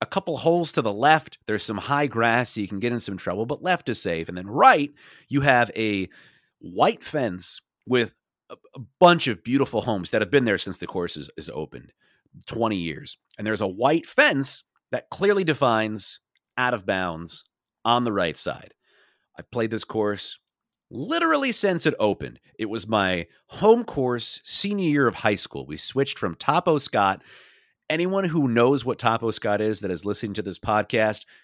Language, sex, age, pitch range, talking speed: English, male, 40-59, 100-140 Hz, 185 wpm